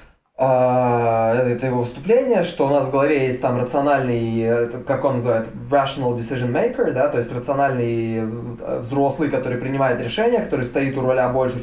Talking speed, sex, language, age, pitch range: 155 wpm, male, Russian, 20-39, 125-155 Hz